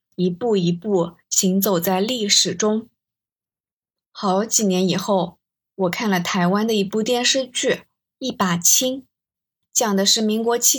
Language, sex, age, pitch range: Chinese, female, 20-39, 185-240 Hz